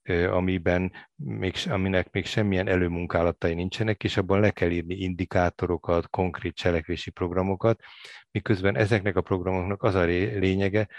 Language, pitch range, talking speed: Hungarian, 85-100 Hz, 120 wpm